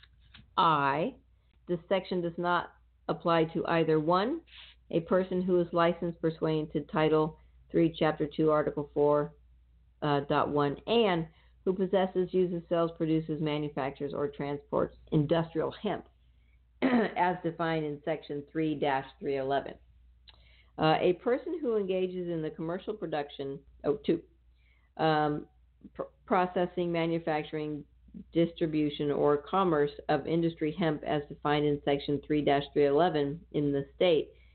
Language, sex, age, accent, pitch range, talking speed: English, female, 50-69, American, 145-175 Hz, 120 wpm